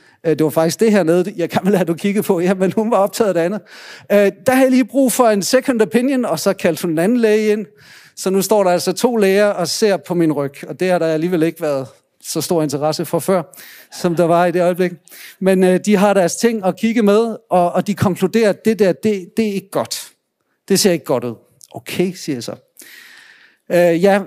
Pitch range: 155-210 Hz